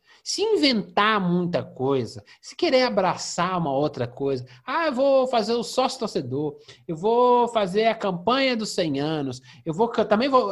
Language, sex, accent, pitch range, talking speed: Portuguese, male, Brazilian, 150-235 Hz, 170 wpm